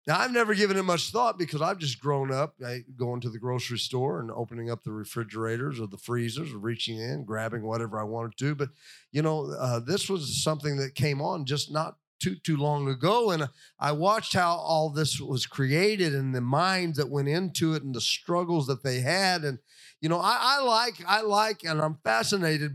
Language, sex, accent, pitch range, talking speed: English, male, American, 145-200 Hz, 215 wpm